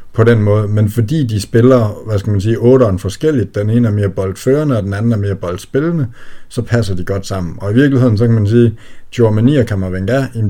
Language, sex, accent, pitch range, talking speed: Danish, male, native, 95-115 Hz, 230 wpm